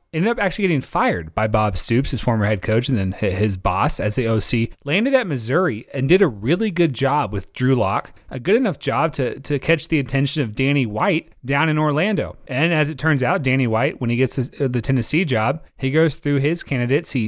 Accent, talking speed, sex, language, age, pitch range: American, 225 wpm, male, English, 30-49, 125-155 Hz